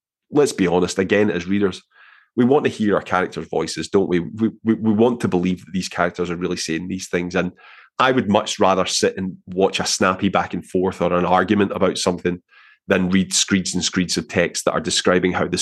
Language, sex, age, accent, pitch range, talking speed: English, male, 30-49, British, 90-105 Hz, 225 wpm